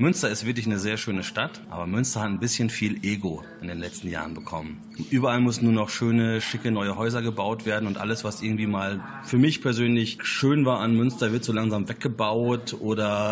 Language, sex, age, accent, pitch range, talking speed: German, male, 30-49, German, 110-135 Hz, 205 wpm